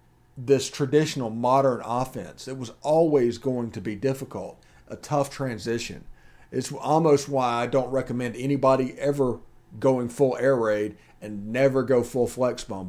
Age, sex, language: 40-59, male, English